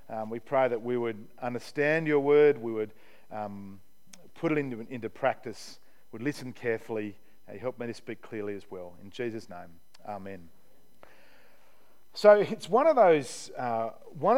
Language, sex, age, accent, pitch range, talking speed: English, male, 40-59, Australian, 125-195 Hz, 165 wpm